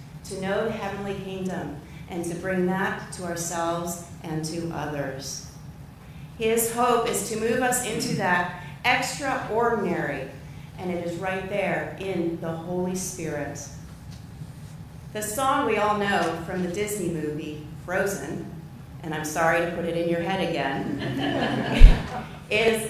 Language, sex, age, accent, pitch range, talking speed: English, female, 40-59, American, 155-210 Hz, 140 wpm